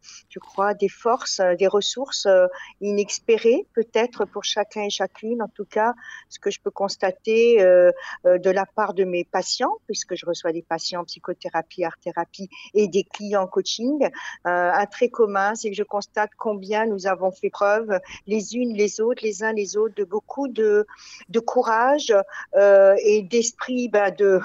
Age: 50-69